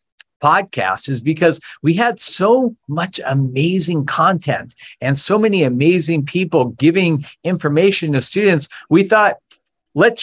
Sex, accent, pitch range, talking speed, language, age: male, American, 140-180 Hz, 125 wpm, English, 50-69